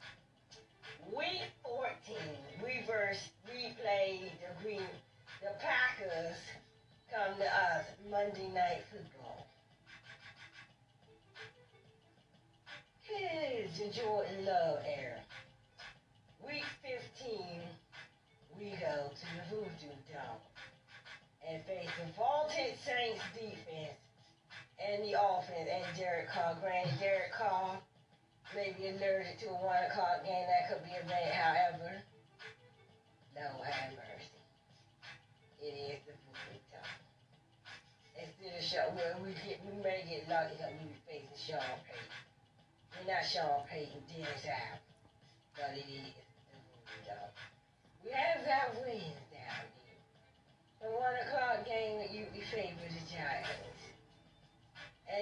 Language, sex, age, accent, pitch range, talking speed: English, female, 40-59, American, 140-205 Hz, 115 wpm